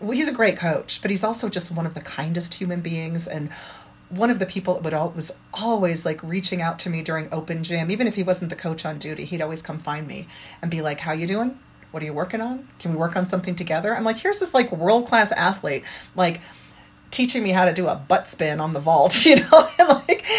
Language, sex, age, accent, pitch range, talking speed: English, female, 30-49, American, 160-210 Hz, 255 wpm